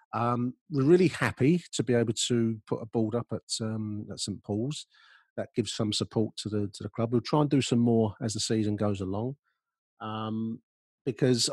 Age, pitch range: 40-59, 105-115 Hz